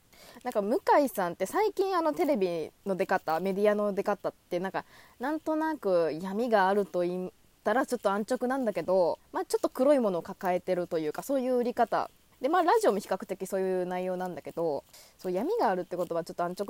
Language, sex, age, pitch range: Japanese, female, 20-39, 180-290 Hz